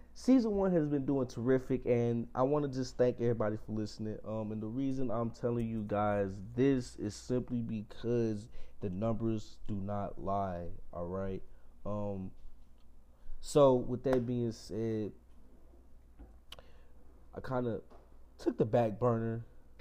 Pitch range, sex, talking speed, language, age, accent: 95-125 Hz, male, 140 wpm, English, 20-39, American